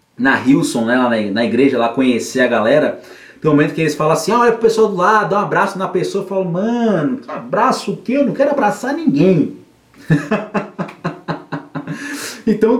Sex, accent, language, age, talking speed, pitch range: male, Brazilian, Portuguese, 30-49, 185 wpm, 155-225 Hz